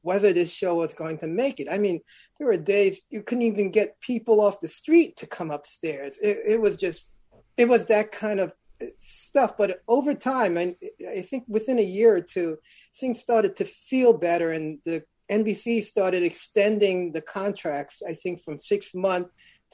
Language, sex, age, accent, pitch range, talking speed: English, male, 30-49, American, 170-225 Hz, 190 wpm